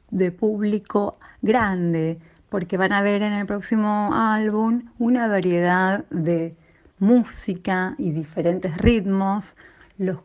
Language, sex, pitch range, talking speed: Spanish, female, 175-225 Hz, 110 wpm